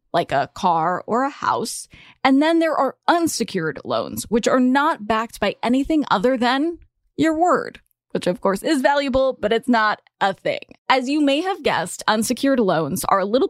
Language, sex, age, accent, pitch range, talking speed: English, female, 10-29, American, 185-265 Hz, 185 wpm